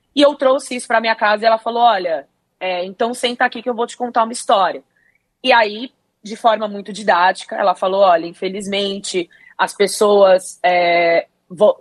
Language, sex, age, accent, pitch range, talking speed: Portuguese, female, 20-39, Brazilian, 195-230 Hz, 185 wpm